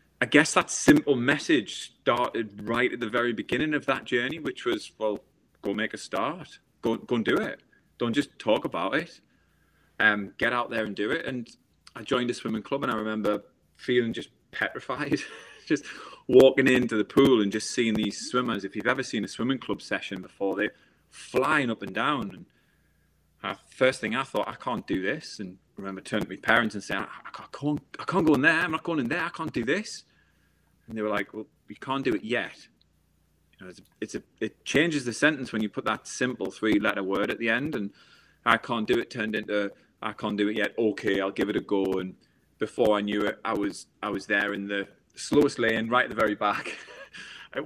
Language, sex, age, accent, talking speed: English, male, 30-49, British, 225 wpm